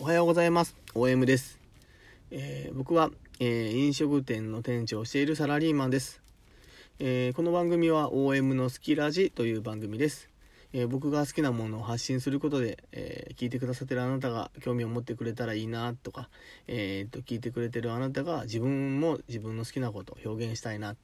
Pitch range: 115-140 Hz